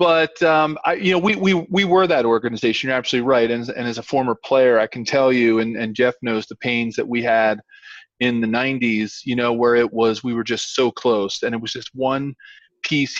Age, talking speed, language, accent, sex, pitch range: 40-59, 240 wpm, English, American, male, 120-155 Hz